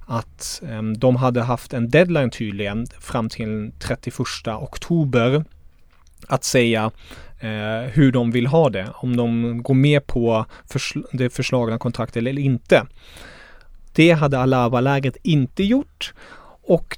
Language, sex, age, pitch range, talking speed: Swedish, male, 30-49, 115-140 Hz, 125 wpm